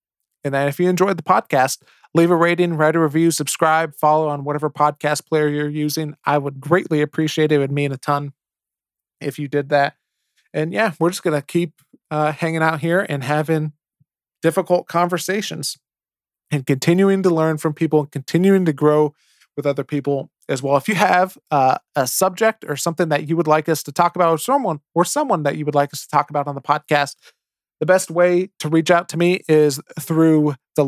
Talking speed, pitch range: 205 wpm, 150-175 Hz